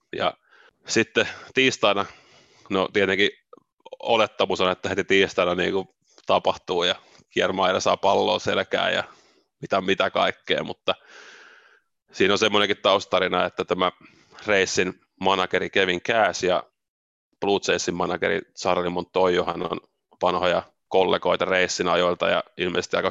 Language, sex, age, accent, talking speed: Finnish, male, 30-49, native, 115 wpm